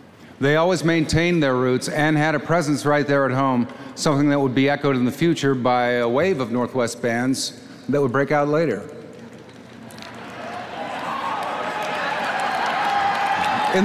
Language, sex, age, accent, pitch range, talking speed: English, male, 50-69, American, 125-150 Hz, 145 wpm